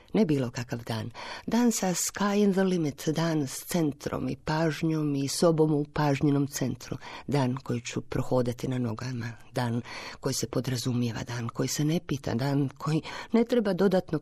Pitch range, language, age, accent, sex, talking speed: 130-160 Hz, Croatian, 50-69, native, female, 170 wpm